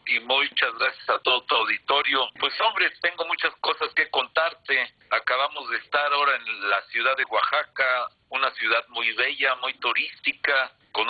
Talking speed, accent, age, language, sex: 160 wpm, Mexican, 50-69, Spanish, male